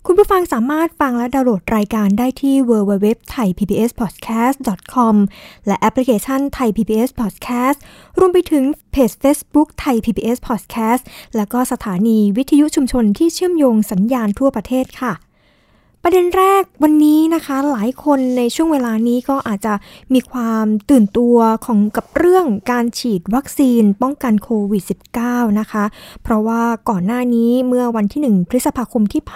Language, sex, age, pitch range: Thai, female, 20-39, 215-260 Hz